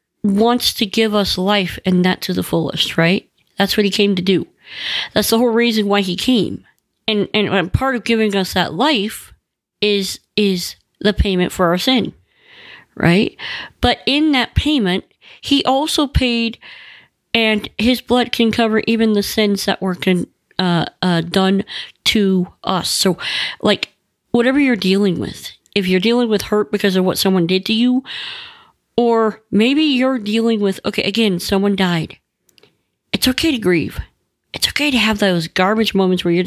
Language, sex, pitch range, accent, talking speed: English, female, 185-235 Hz, American, 170 wpm